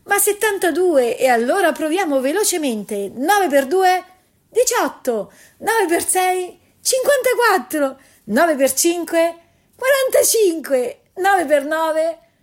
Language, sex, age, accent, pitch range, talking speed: Italian, female, 40-59, native, 200-320 Hz, 100 wpm